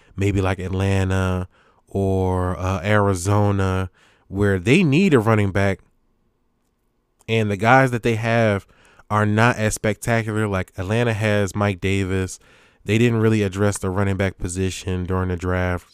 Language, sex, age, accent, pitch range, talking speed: English, male, 20-39, American, 95-115 Hz, 145 wpm